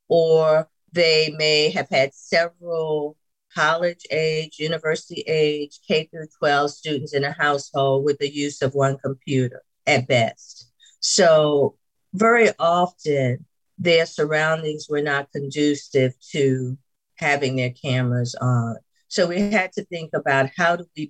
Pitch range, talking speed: 140-170 Hz, 125 wpm